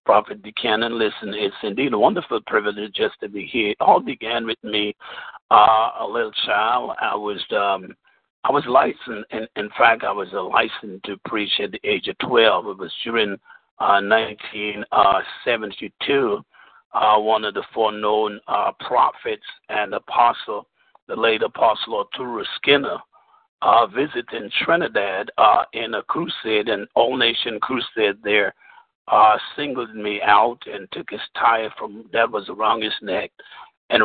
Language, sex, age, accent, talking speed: English, male, 50-69, American, 155 wpm